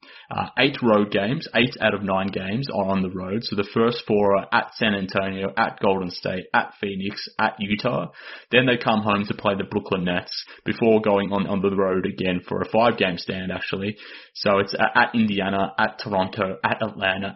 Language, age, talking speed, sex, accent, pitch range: English, 20-39, 195 wpm, male, Australian, 95-110 Hz